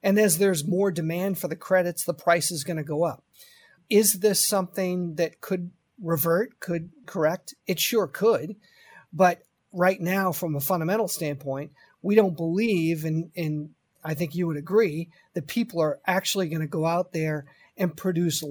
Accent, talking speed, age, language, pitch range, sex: American, 170 wpm, 40-59, English, 165-200 Hz, male